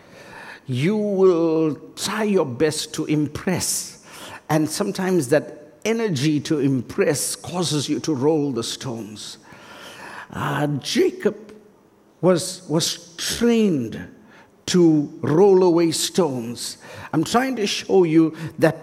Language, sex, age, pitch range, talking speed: English, male, 60-79, 155-205 Hz, 110 wpm